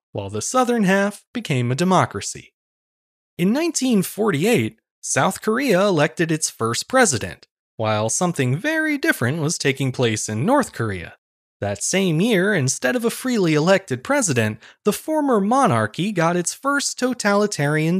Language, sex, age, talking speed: English, male, 20-39, 135 wpm